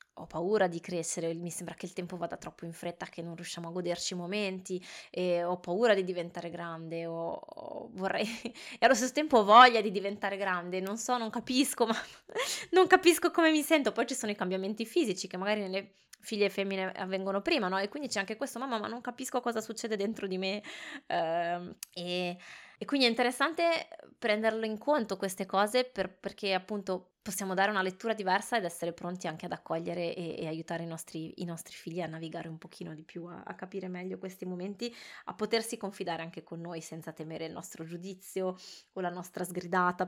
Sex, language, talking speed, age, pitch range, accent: female, Italian, 205 wpm, 20-39, 175-215 Hz, native